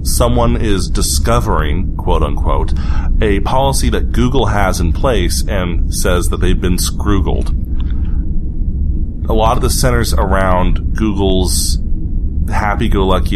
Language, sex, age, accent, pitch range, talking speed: English, male, 30-49, American, 75-95 Hz, 115 wpm